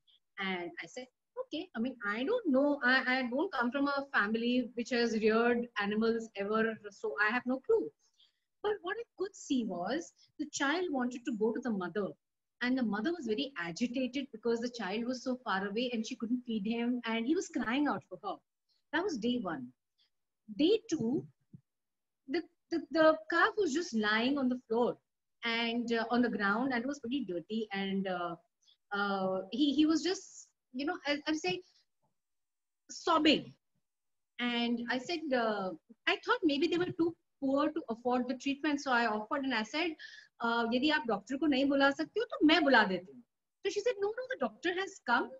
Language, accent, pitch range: English, Indian, 230-320 Hz